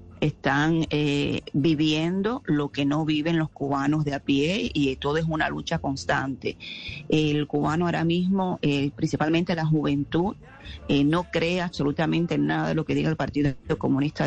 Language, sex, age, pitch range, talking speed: Spanish, female, 40-59, 140-160 Hz, 165 wpm